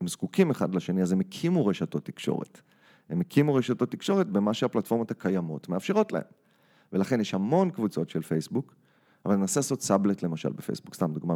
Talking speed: 170 wpm